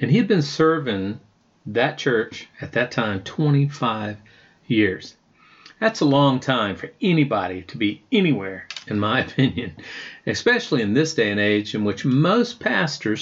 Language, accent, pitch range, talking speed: English, American, 110-155 Hz, 155 wpm